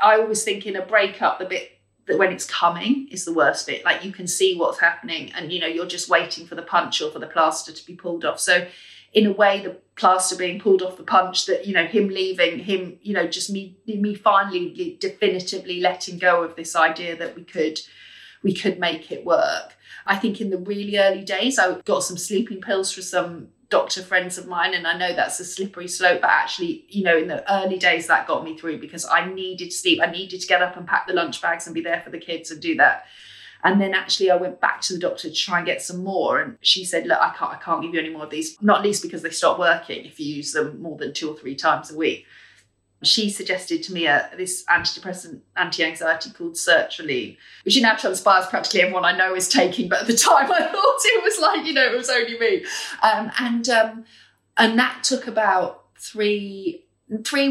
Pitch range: 175-225 Hz